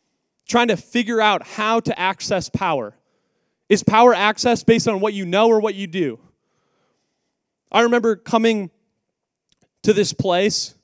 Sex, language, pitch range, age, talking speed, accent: male, English, 185-225 Hz, 20-39, 145 wpm, American